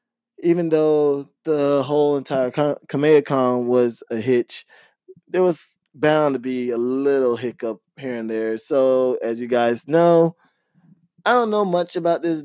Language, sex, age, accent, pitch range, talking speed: English, male, 20-39, American, 115-150 Hz, 155 wpm